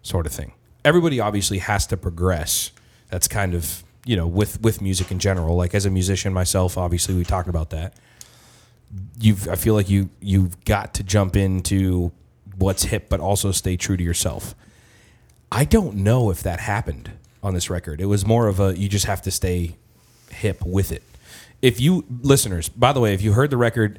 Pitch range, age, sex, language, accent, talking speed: 95-110 Hz, 30-49, male, English, American, 205 wpm